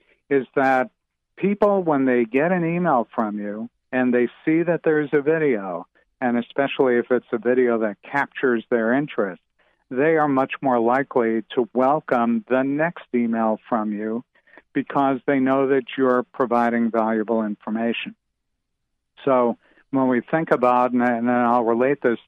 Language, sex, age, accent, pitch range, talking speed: English, male, 60-79, American, 115-135 Hz, 155 wpm